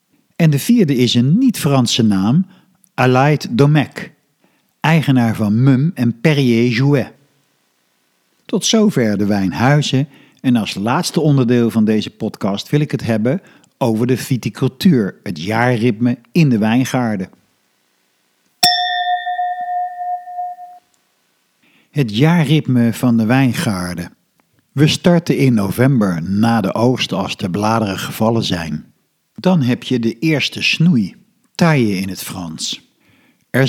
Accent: Dutch